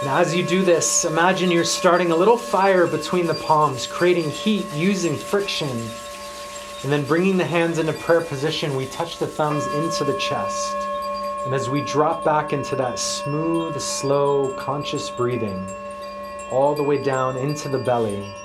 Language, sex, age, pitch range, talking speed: English, male, 30-49, 110-170 Hz, 165 wpm